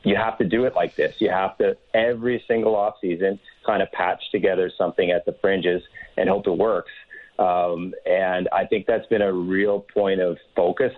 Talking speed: 200 wpm